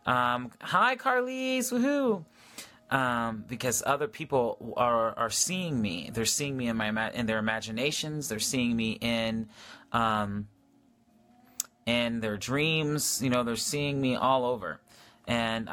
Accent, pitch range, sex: American, 115-140 Hz, male